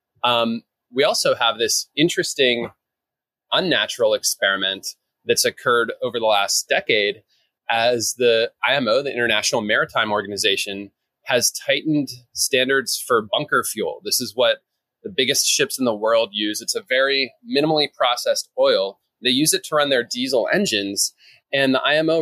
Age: 20-39